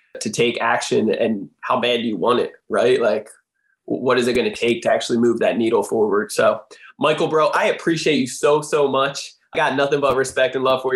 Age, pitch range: 20-39, 125-155 Hz